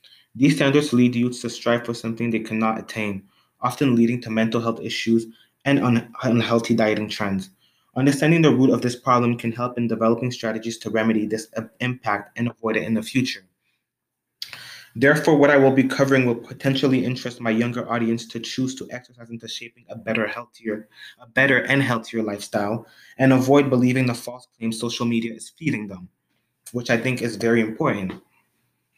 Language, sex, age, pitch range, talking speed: English, male, 20-39, 115-125 Hz, 170 wpm